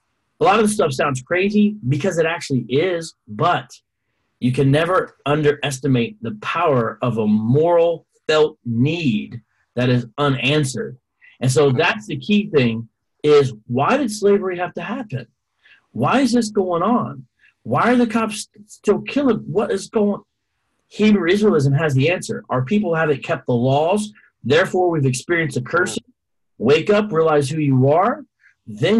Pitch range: 130-185 Hz